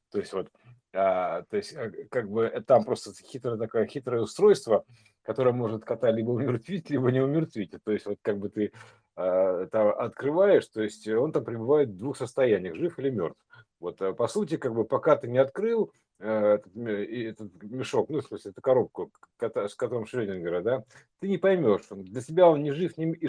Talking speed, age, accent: 180 wpm, 50-69, native